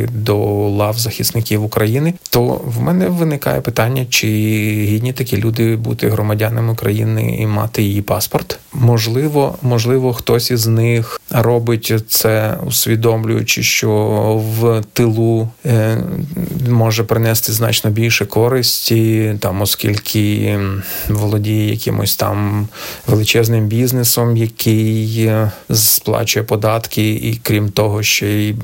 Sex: male